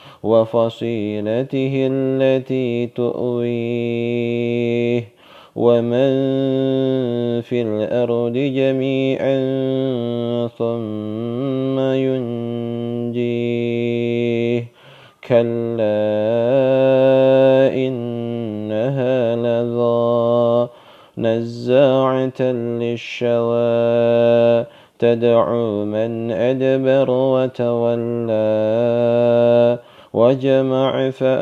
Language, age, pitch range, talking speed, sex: Indonesian, 30-49, 120-130 Hz, 40 wpm, male